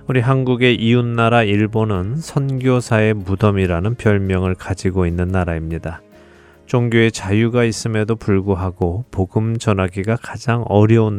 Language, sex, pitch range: Korean, male, 100-125 Hz